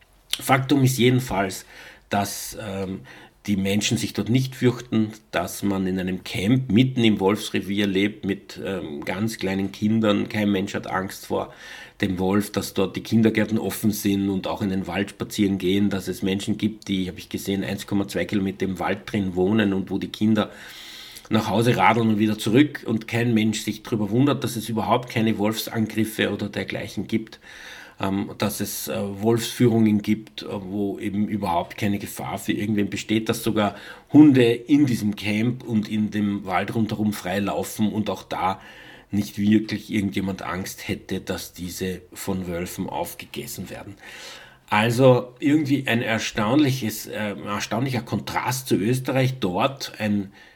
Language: German